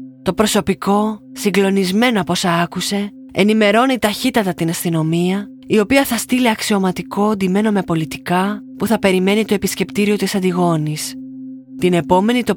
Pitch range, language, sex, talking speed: 160-220 Hz, Greek, female, 135 wpm